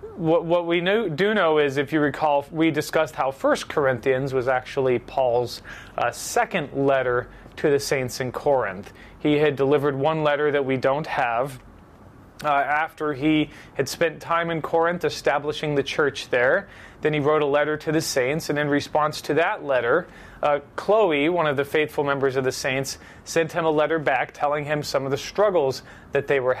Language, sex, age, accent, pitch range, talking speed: English, male, 30-49, American, 130-160 Hz, 185 wpm